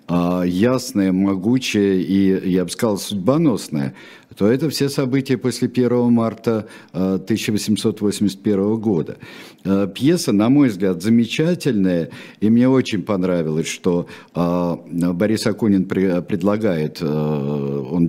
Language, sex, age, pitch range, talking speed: Russian, male, 50-69, 90-120 Hz, 100 wpm